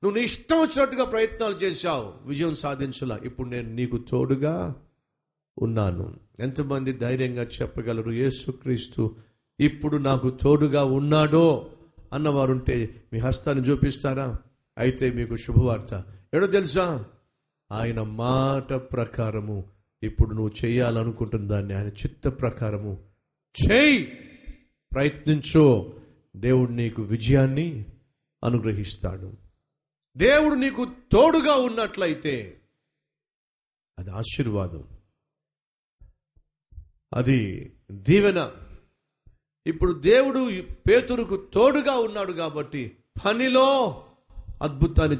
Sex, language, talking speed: male, Telugu, 80 wpm